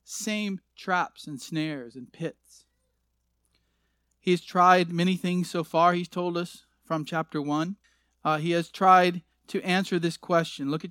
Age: 40-59